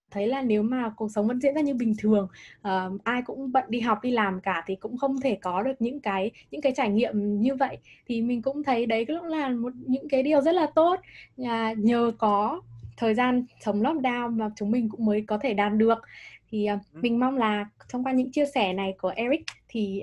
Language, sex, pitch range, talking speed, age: Vietnamese, female, 205-265 Hz, 235 wpm, 10-29